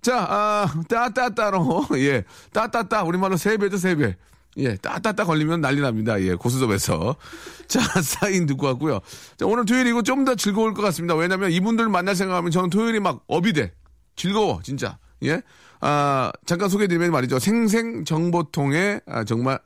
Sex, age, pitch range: male, 40-59, 115-190 Hz